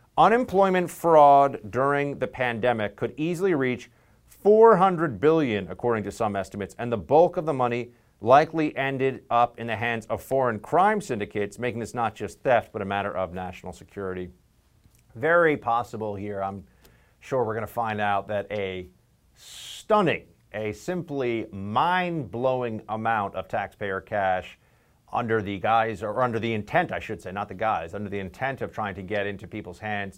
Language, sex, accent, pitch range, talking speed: English, male, American, 100-130 Hz, 165 wpm